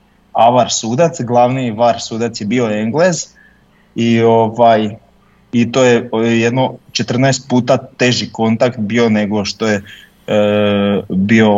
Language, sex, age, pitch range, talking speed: Croatian, male, 20-39, 105-125 Hz, 130 wpm